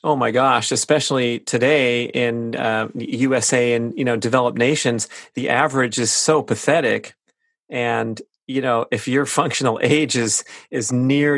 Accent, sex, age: American, male, 30-49